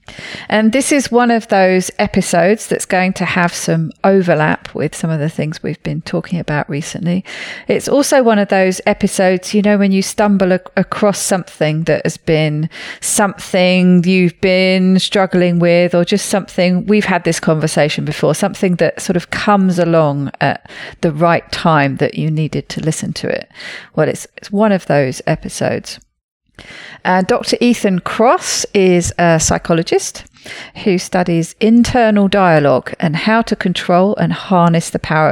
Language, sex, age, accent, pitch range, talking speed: English, female, 40-59, British, 165-205 Hz, 160 wpm